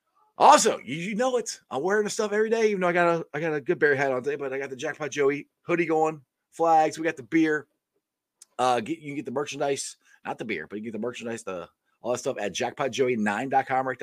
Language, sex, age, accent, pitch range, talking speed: English, male, 30-49, American, 130-205 Hz, 255 wpm